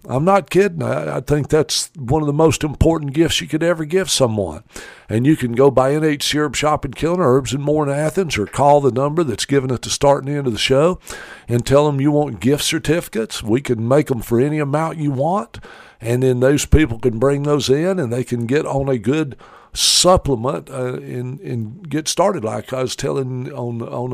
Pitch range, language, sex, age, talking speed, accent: 125-160 Hz, English, male, 60-79, 225 wpm, American